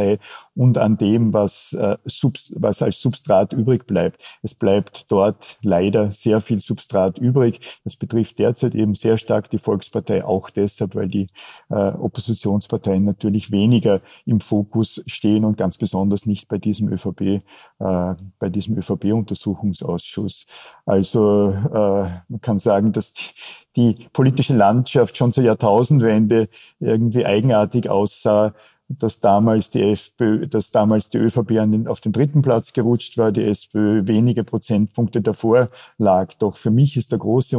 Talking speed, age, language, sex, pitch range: 140 wpm, 50-69, German, male, 100-115 Hz